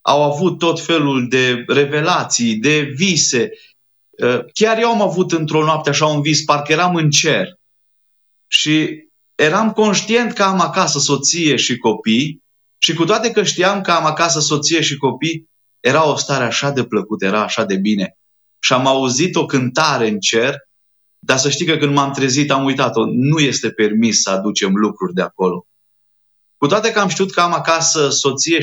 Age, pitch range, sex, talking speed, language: 30-49, 125-165 Hz, male, 175 wpm, Romanian